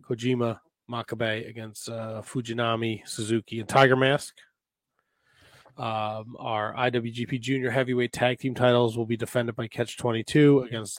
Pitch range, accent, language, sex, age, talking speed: 115-130 Hz, American, English, male, 20-39, 125 wpm